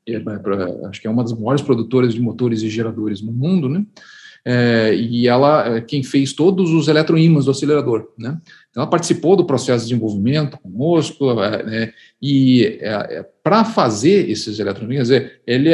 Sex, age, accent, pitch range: male, 40-59, Brazilian, 115-160 Hz